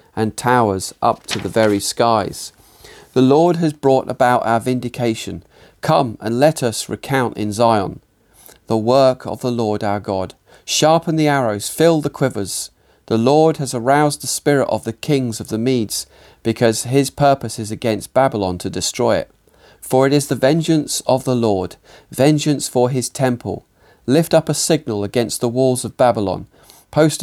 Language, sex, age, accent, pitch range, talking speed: English, male, 40-59, British, 110-135 Hz, 170 wpm